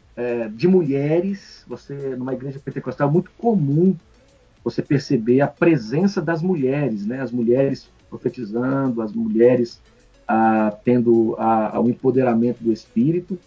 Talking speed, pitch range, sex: 135 wpm, 125-170 Hz, male